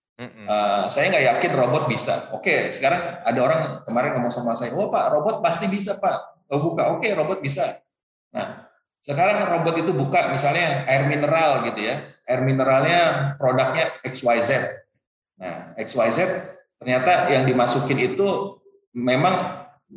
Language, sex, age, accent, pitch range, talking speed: Indonesian, male, 20-39, native, 120-160 Hz, 145 wpm